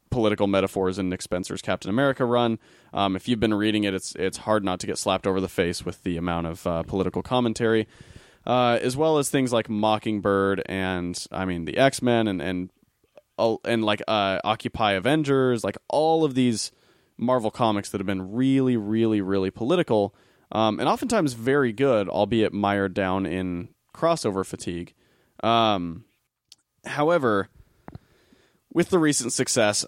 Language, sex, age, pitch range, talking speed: English, male, 20-39, 95-120 Hz, 160 wpm